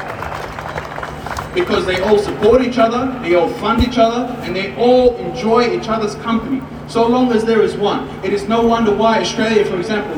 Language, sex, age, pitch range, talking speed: English, male, 30-49, 195-240 Hz, 190 wpm